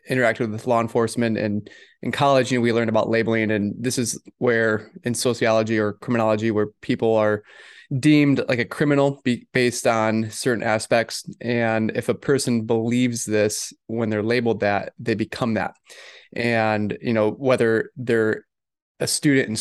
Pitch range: 110-125 Hz